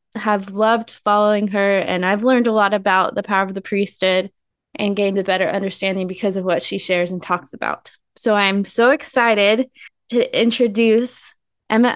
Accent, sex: American, female